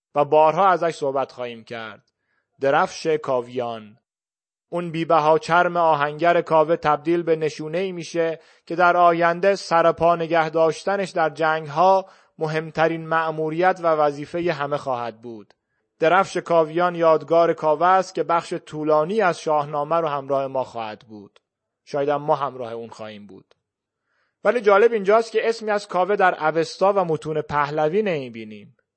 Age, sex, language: 30-49, male, Persian